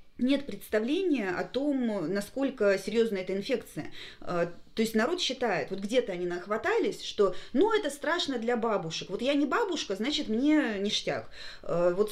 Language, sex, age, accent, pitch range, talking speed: Russian, female, 20-39, native, 195-245 Hz, 150 wpm